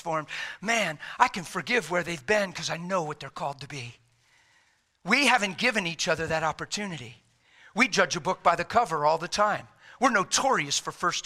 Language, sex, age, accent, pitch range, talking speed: English, male, 50-69, American, 160-215 Hz, 190 wpm